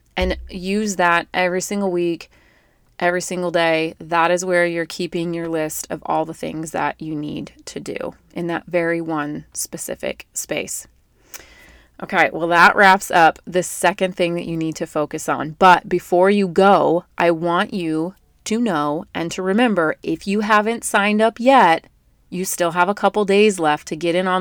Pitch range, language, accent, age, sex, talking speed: 165-190 Hz, English, American, 30-49, female, 180 wpm